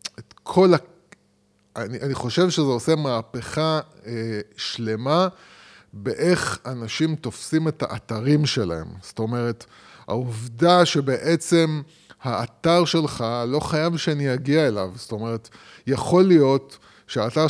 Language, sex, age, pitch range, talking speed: Hebrew, male, 20-39, 130-170 Hz, 110 wpm